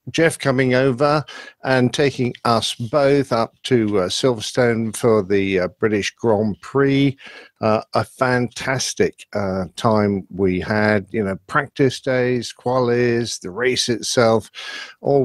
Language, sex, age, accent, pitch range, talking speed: English, male, 50-69, British, 110-135 Hz, 130 wpm